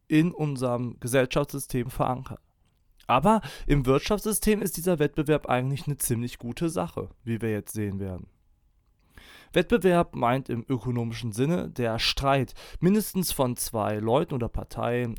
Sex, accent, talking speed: male, German, 130 wpm